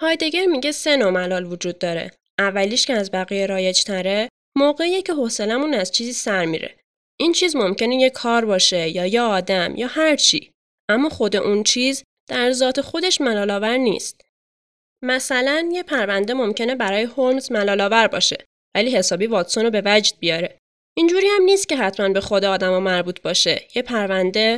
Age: 10-29